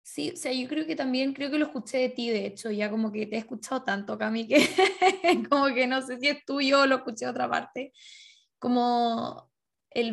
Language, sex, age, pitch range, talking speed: Spanish, female, 10-29, 235-275 Hz, 230 wpm